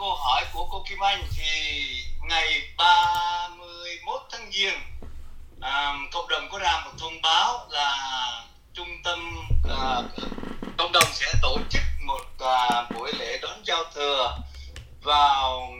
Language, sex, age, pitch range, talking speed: Vietnamese, male, 20-39, 110-175 Hz, 135 wpm